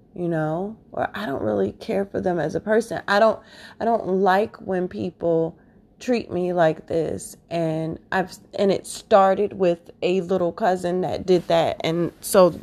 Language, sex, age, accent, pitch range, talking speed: English, female, 20-39, American, 180-225 Hz, 175 wpm